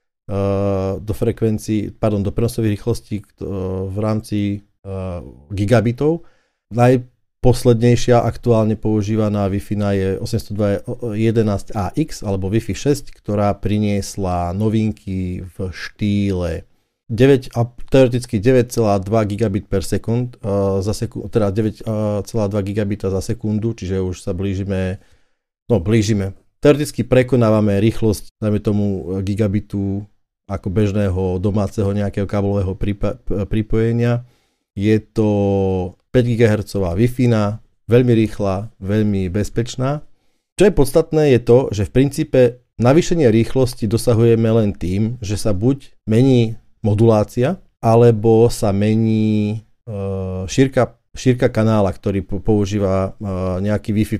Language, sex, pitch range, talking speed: Slovak, male, 100-120 Hz, 95 wpm